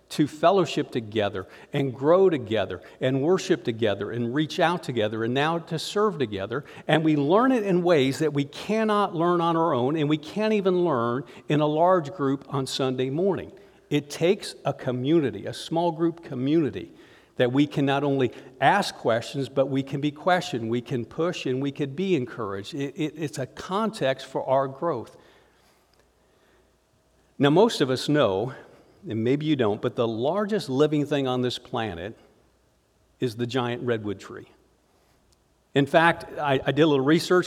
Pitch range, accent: 130-165 Hz, American